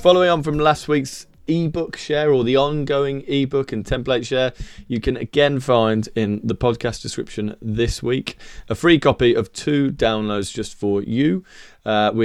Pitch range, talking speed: 110-145 Hz, 170 wpm